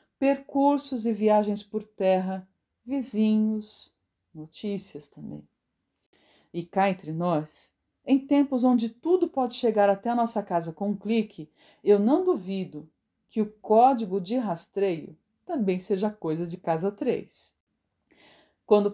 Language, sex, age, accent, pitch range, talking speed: Portuguese, female, 50-69, Brazilian, 185-250 Hz, 125 wpm